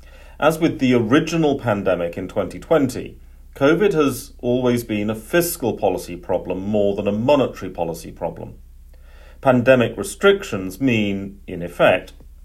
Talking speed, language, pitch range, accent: 125 wpm, English, 85-115 Hz, British